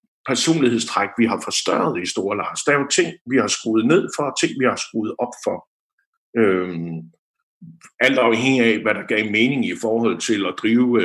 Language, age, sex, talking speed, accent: Danish, 50-69, male, 195 wpm, native